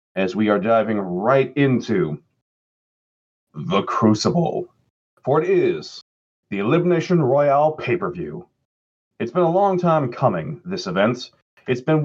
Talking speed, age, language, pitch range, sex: 125 wpm, 40-59, English, 105-155 Hz, male